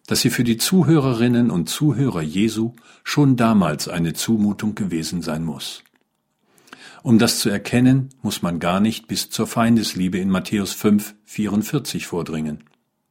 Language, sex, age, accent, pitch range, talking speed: German, male, 50-69, German, 90-125 Hz, 140 wpm